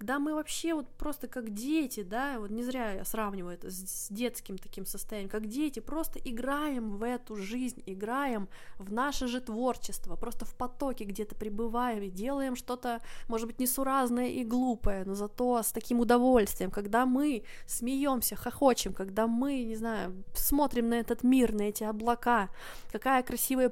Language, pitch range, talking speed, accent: Russian, 210-255 Hz, 165 wpm, native